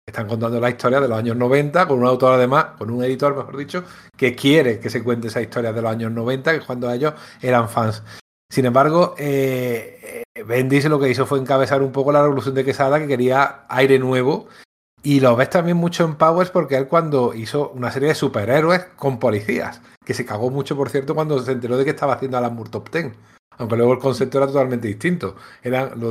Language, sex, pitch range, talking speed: Spanish, male, 120-140 Hz, 220 wpm